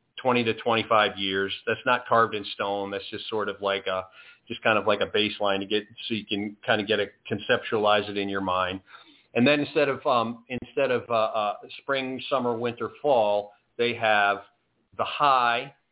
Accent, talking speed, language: American, 195 wpm, English